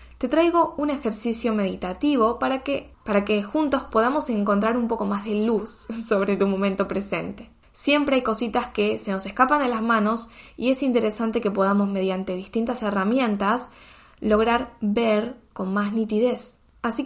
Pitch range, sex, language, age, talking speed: 205-250 Hz, female, Spanish, 10-29, 155 wpm